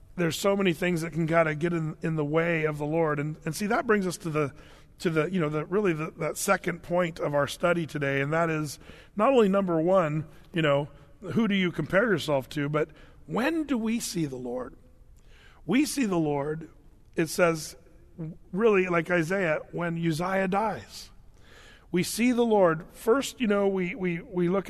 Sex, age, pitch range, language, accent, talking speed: male, 40-59, 155-200 Hz, English, American, 200 wpm